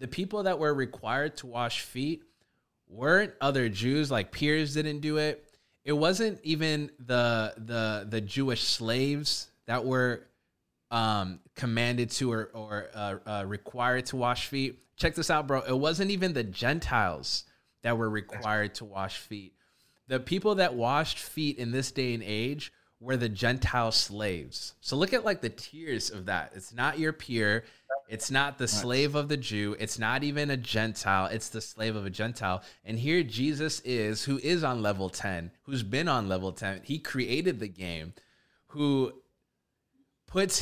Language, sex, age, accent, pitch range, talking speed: English, male, 20-39, American, 105-140 Hz, 170 wpm